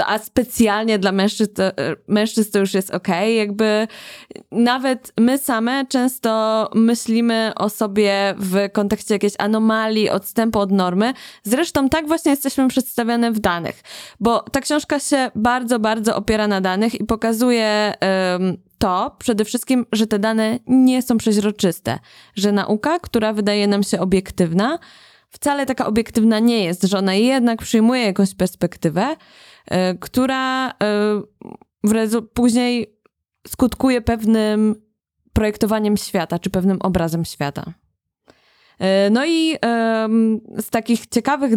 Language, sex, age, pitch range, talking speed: Polish, female, 20-39, 200-235 Hz, 125 wpm